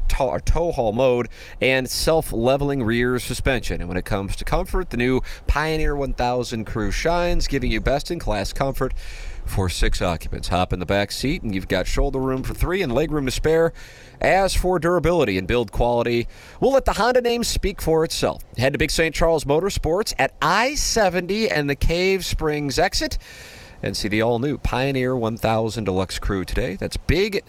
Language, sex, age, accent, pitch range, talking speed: English, male, 40-59, American, 100-155 Hz, 175 wpm